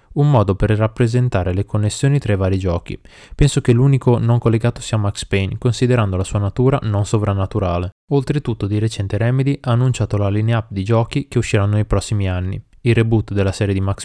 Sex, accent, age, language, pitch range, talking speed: male, native, 20-39, Italian, 100-120 Hz, 195 wpm